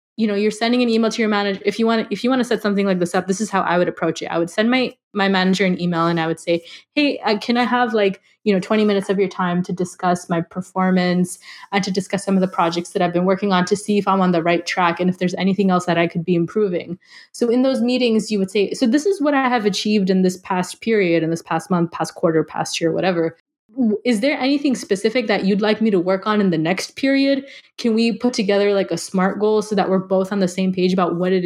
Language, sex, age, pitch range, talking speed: English, female, 20-39, 185-225 Hz, 280 wpm